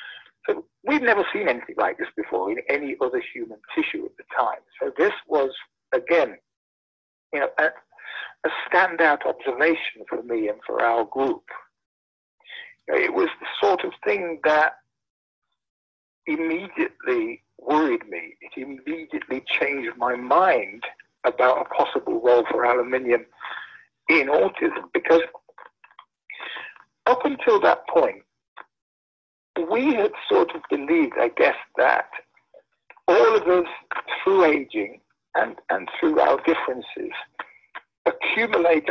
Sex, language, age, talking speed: male, English, 60-79, 120 wpm